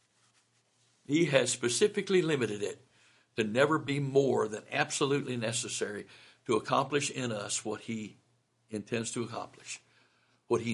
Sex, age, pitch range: male, 60-79, 120-140 Hz